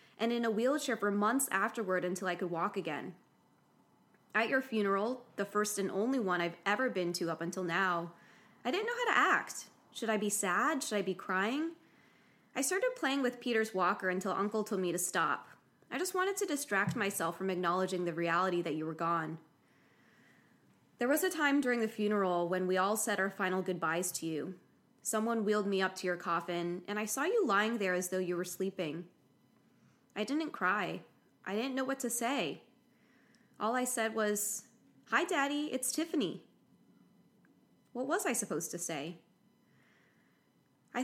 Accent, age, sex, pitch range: American, 20-39, female, 180-240 Hz